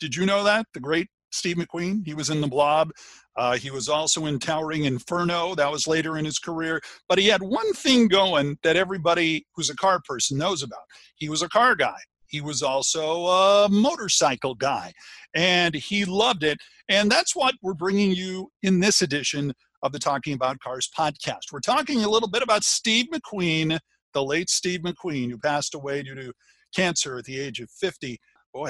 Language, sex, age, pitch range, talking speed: English, male, 50-69, 145-190 Hz, 195 wpm